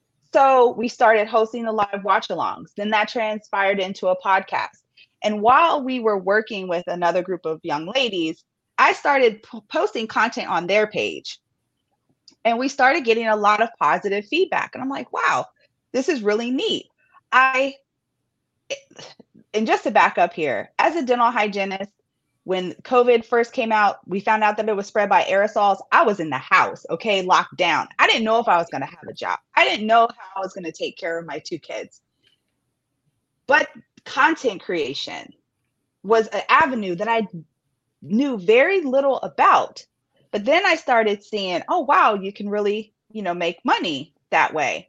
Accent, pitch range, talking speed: American, 190-240 Hz, 180 wpm